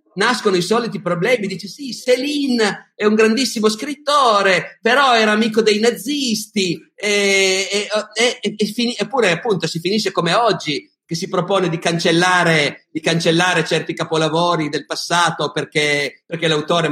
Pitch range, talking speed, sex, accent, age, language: 160-220 Hz, 130 wpm, male, native, 50-69, Italian